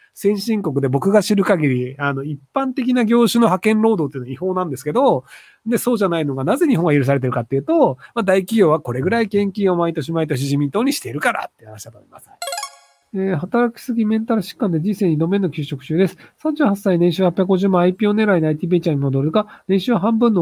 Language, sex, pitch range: Japanese, male, 150-230 Hz